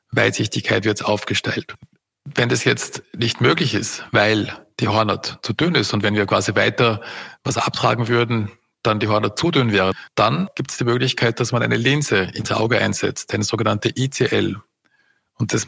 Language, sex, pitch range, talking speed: German, male, 110-130 Hz, 175 wpm